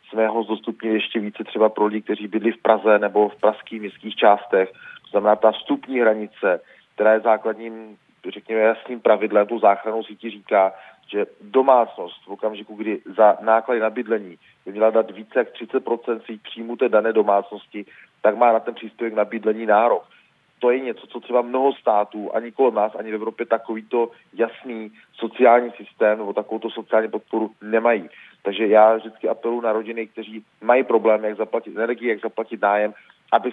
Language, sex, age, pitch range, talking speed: Czech, male, 40-59, 105-115 Hz, 170 wpm